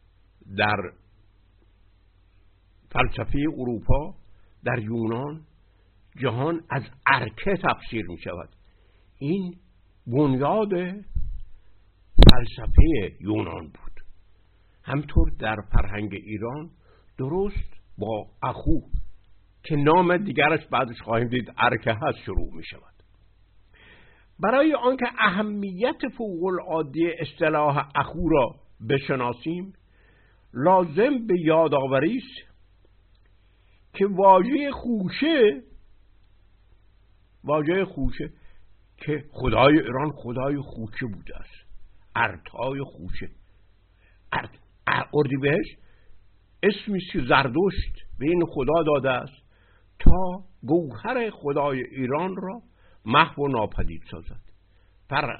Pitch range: 95-155 Hz